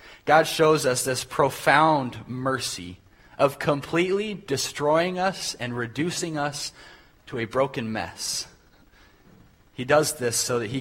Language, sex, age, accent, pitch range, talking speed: English, male, 30-49, American, 115-145 Hz, 130 wpm